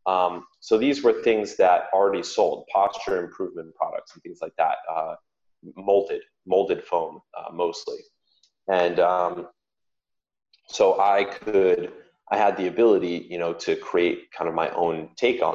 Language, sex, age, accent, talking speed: English, male, 30-49, American, 155 wpm